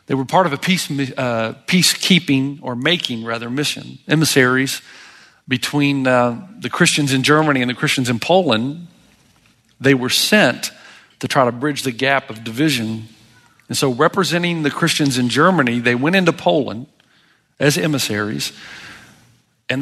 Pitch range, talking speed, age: 130-160 Hz, 145 wpm, 50-69